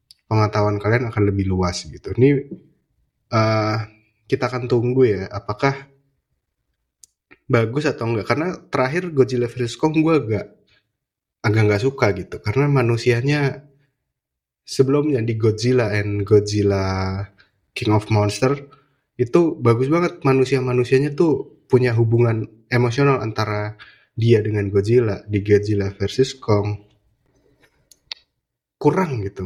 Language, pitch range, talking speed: Indonesian, 105-130 Hz, 110 wpm